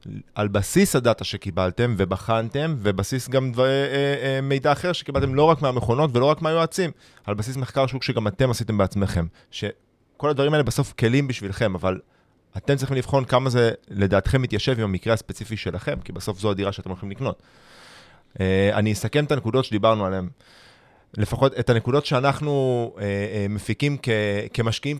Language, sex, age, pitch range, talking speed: Hebrew, male, 30-49, 100-135 Hz, 150 wpm